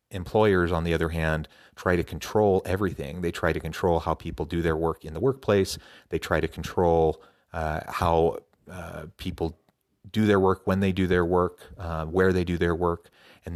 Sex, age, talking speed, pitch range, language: male, 30-49, 195 wpm, 80-95 Hz, English